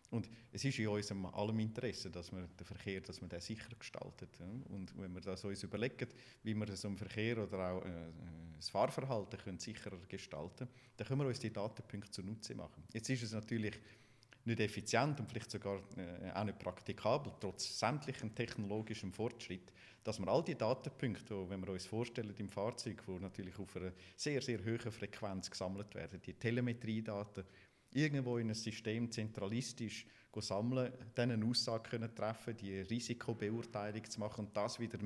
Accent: Austrian